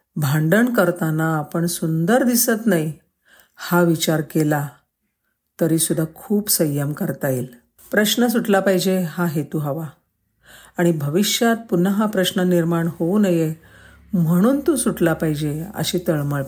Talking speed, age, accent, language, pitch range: 125 wpm, 50-69, native, Marathi, 155-195 Hz